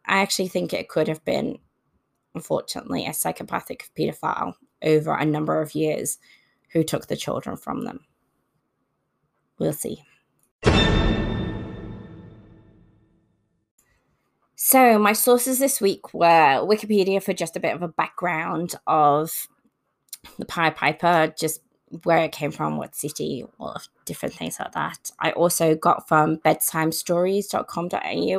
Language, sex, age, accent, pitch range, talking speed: English, female, 20-39, British, 155-185 Hz, 125 wpm